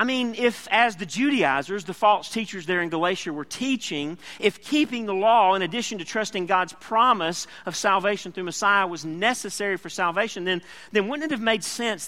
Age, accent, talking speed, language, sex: 40-59, American, 195 wpm, English, male